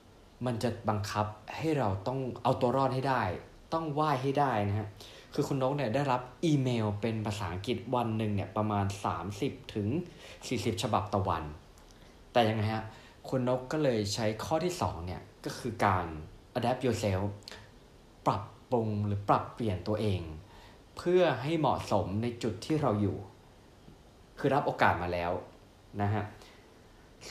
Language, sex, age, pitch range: Thai, male, 20-39, 100-125 Hz